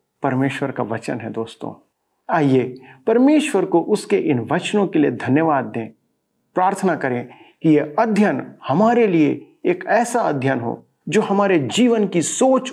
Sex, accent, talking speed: male, native, 145 wpm